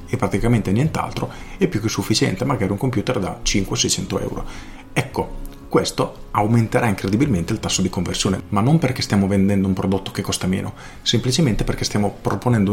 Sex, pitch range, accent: male, 100-125 Hz, native